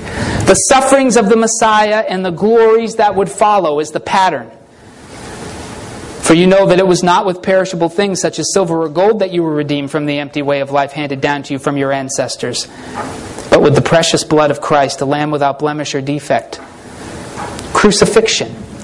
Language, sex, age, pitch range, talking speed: English, male, 30-49, 155-220 Hz, 190 wpm